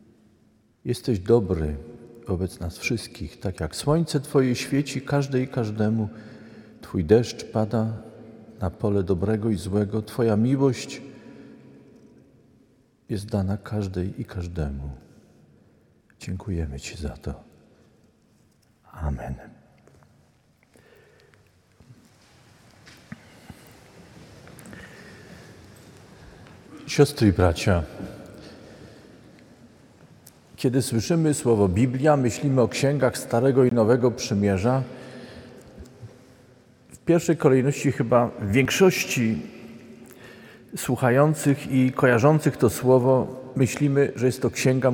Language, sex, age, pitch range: Polish, male, 50-69, 105-135 Hz